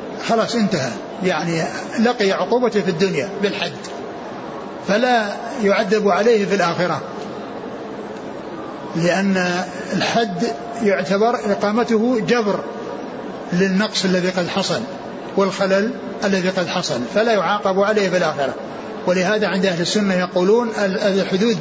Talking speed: 105 wpm